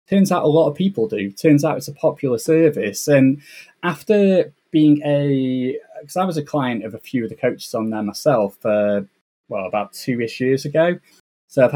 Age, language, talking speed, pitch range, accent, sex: 10-29, English, 205 wpm, 115-155 Hz, British, male